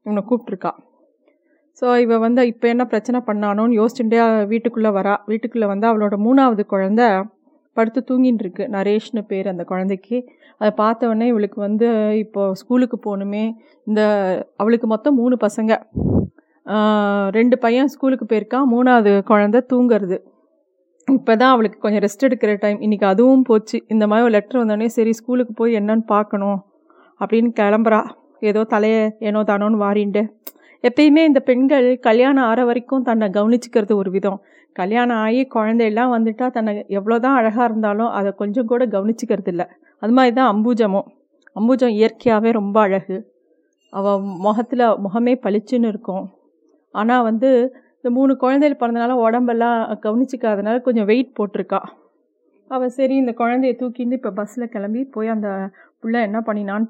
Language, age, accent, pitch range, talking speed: Tamil, 30-49, native, 210-250 Hz, 135 wpm